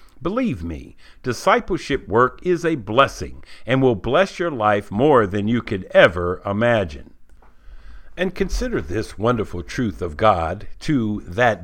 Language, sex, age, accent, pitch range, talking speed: English, male, 60-79, American, 90-140 Hz, 140 wpm